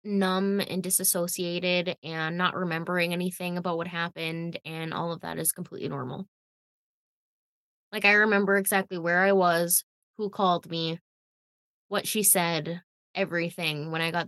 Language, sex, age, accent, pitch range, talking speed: English, female, 10-29, American, 170-200 Hz, 145 wpm